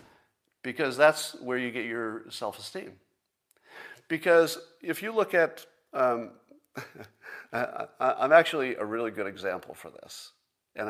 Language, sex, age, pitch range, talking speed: English, male, 50-69, 105-160 Hz, 125 wpm